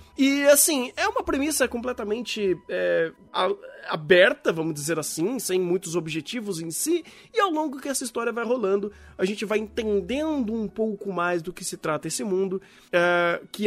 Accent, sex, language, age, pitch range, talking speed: Brazilian, male, Portuguese, 20-39, 175-240 Hz, 160 wpm